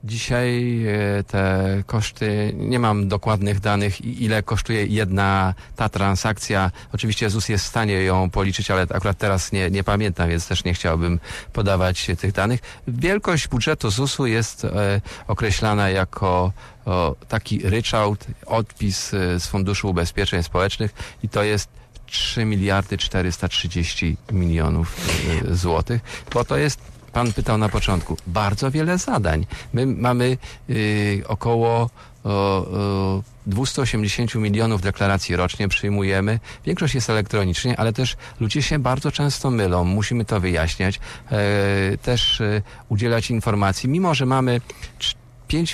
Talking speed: 125 wpm